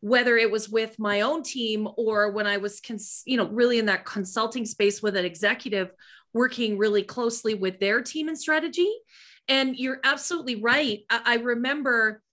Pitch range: 205-260 Hz